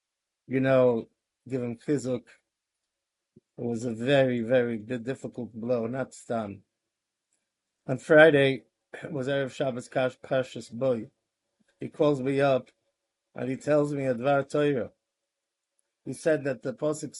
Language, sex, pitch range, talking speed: English, male, 115-150 Hz, 125 wpm